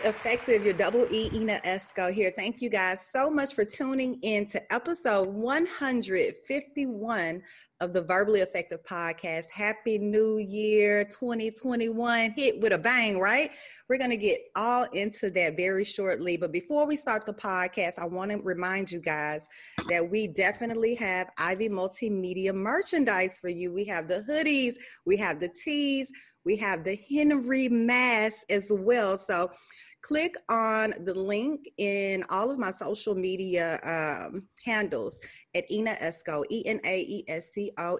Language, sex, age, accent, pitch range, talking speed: English, female, 30-49, American, 190-265 Hz, 145 wpm